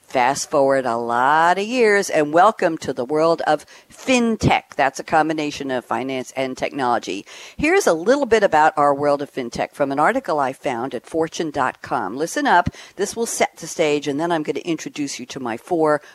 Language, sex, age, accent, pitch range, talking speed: English, female, 50-69, American, 145-205 Hz, 195 wpm